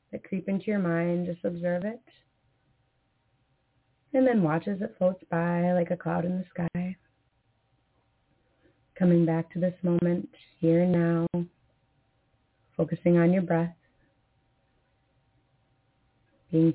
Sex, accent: female, American